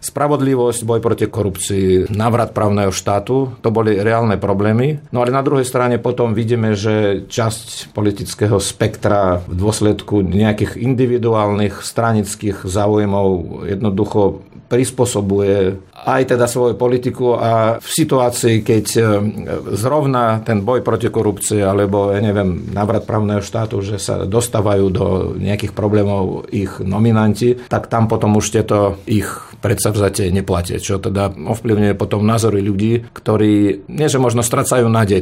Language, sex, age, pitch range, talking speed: Slovak, male, 50-69, 100-115 Hz, 135 wpm